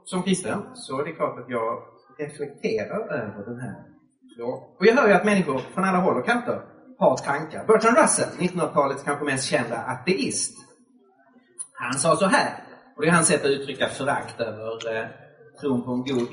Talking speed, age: 185 wpm, 30-49